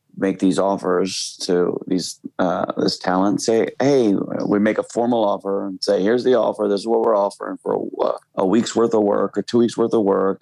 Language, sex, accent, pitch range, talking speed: English, male, American, 95-110 Hz, 220 wpm